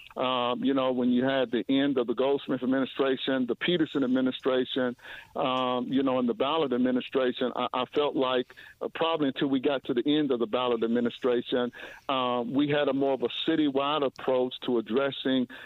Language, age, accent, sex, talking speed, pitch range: English, 50-69, American, male, 190 wpm, 125-140 Hz